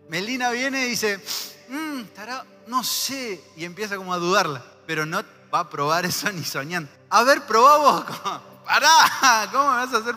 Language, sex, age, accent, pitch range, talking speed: Spanish, male, 20-39, Argentinian, 170-240 Hz, 170 wpm